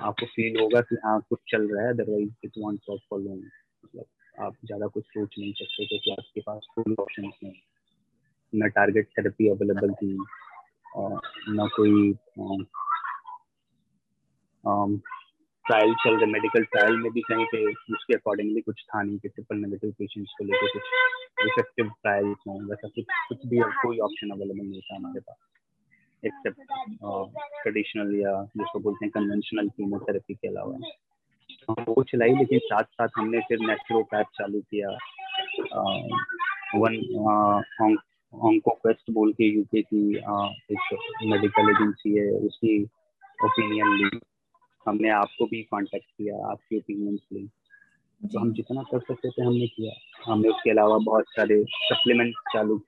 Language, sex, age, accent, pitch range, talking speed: English, male, 20-39, Indian, 105-130 Hz, 70 wpm